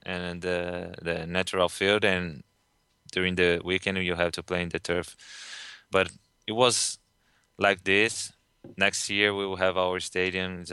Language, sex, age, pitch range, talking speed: English, male, 20-39, 90-100 Hz, 160 wpm